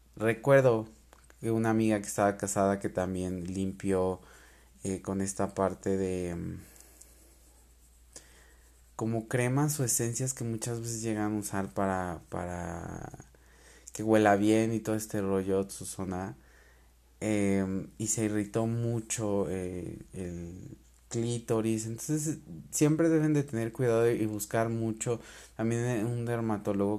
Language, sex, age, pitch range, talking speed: Spanish, male, 20-39, 90-115 Hz, 125 wpm